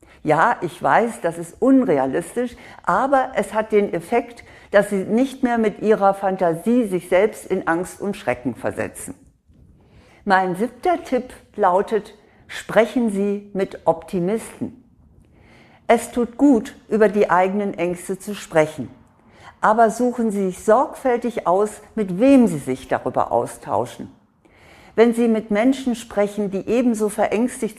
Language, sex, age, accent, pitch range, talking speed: German, female, 60-79, German, 185-240 Hz, 135 wpm